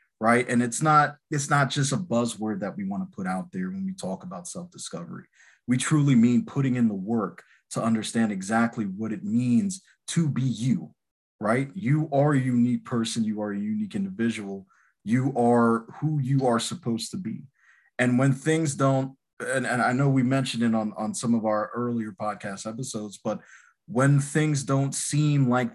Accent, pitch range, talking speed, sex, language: American, 115-140 Hz, 190 wpm, male, English